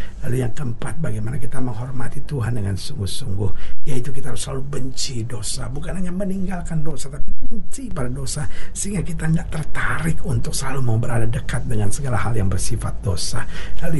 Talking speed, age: 165 wpm, 60-79